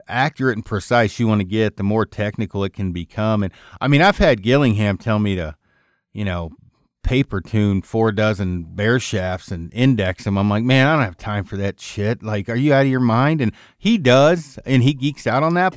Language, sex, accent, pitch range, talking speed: English, male, American, 100-125 Hz, 225 wpm